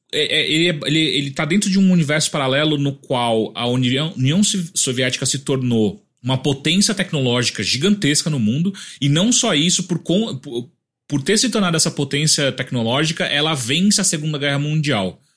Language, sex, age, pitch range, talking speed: English, male, 30-49, 130-180 Hz, 160 wpm